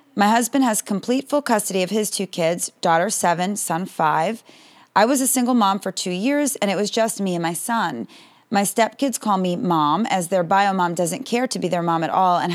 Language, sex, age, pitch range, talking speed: English, female, 30-49, 175-215 Hz, 230 wpm